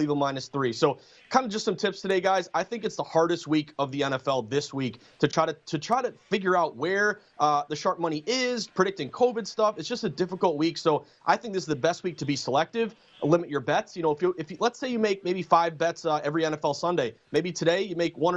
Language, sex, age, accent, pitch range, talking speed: English, male, 30-49, American, 150-185 Hz, 260 wpm